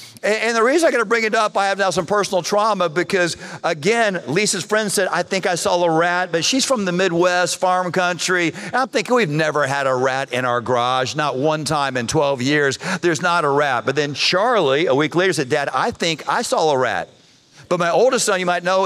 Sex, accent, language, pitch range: male, American, English, 155-195 Hz